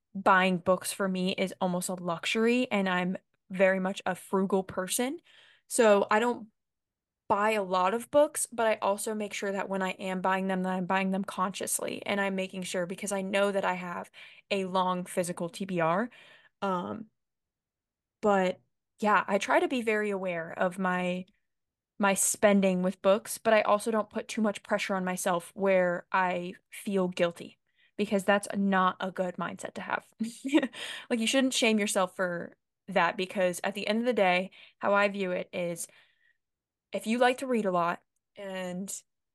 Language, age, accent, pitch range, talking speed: English, 20-39, American, 185-210 Hz, 180 wpm